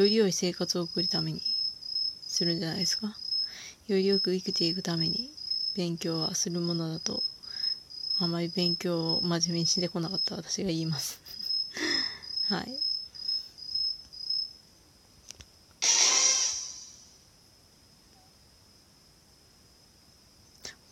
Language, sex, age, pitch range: Japanese, female, 20-39, 170-225 Hz